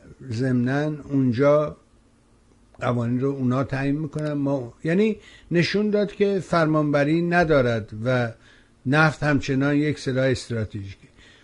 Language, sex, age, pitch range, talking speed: Persian, male, 60-79, 125-175 Hz, 100 wpm